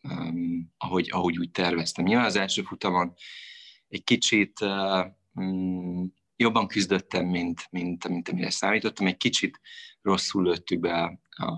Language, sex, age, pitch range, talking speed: Hungarian, male, 30-49, 85-105 Hz, 145 wpm